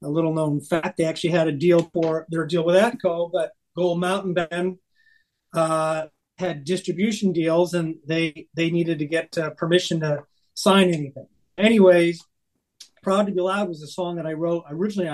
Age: 40-59